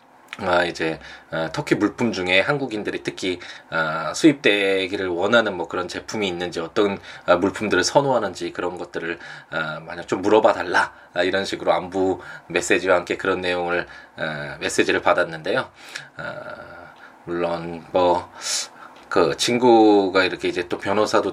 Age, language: 20-39, Korean